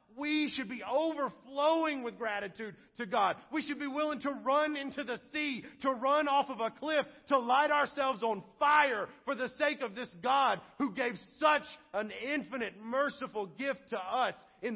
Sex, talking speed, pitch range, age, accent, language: male, 180 wpm, 235-285 Hz, 40-59, American, English